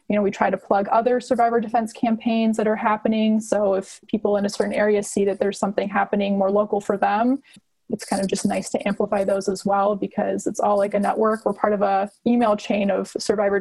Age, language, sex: 20-39, English, female